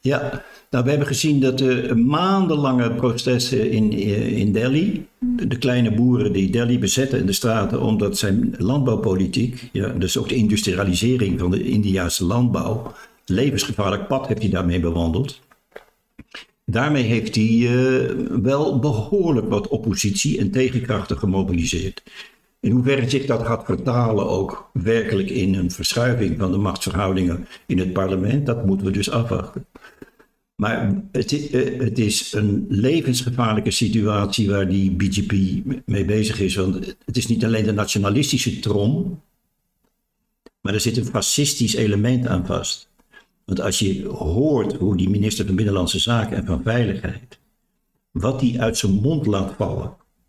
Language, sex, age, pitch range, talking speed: Dutch, male, 60-79, 100-125 Hz, 145 wpm